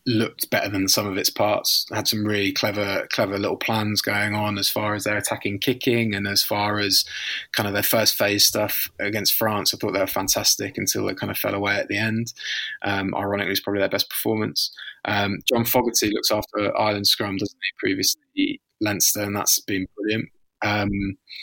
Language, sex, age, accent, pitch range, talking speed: English, male, 20-39, British, 100-115 Hz, 200 wpm